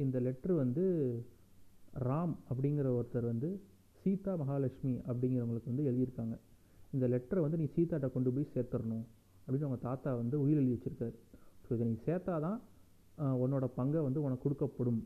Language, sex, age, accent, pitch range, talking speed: Tamil, male, 30-49, native, 120-145 Hz, 145 wpm